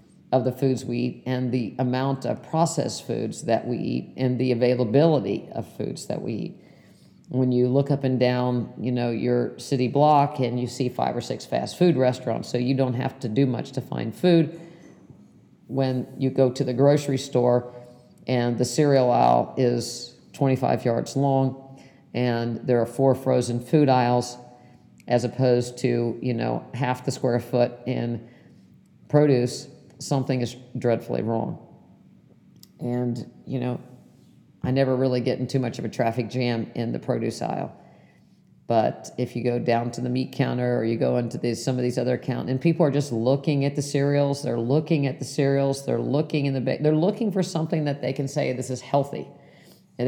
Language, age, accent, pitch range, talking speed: English, 50-69, American, 125-140 Hz, 185 wpm